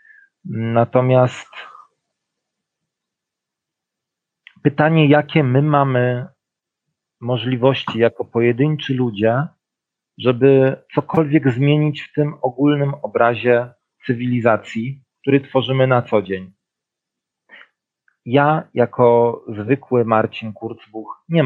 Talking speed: 80 wpm